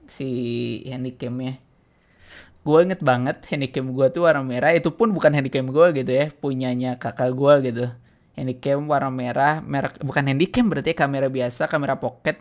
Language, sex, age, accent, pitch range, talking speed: Indonesian, male, 20-39, native, 145-205 Hz, 155 wpm